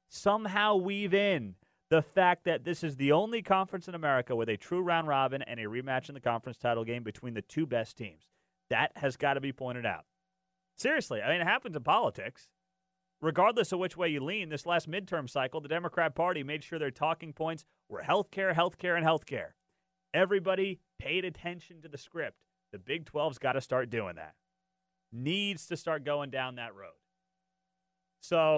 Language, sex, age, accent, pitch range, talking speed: English, male, 30-49, American, 130-185 Hz, 195 wpm